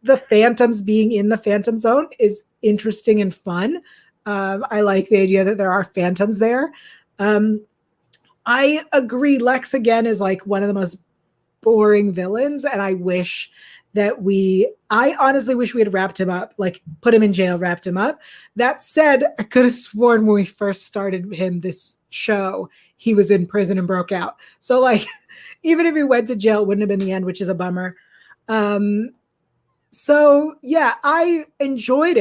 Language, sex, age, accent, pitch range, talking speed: English, female, 30-49, American, 195-250 Hz, 185 wpm